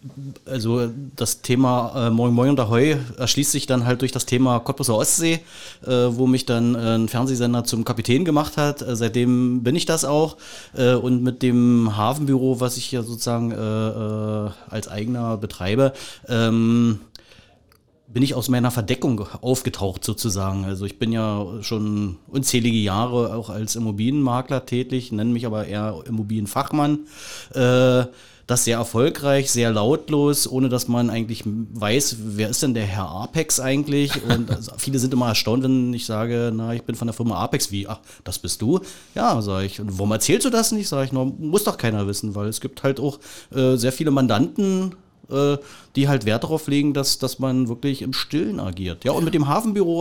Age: 30-49